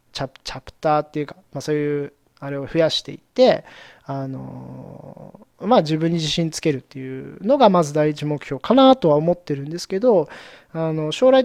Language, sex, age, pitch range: Japanese, male, 20-39, 150-225 Hz